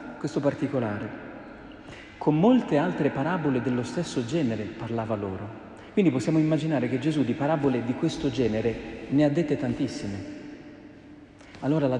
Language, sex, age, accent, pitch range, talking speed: Italian, male, 40-59, native, 110-150 Hz, 135 wpm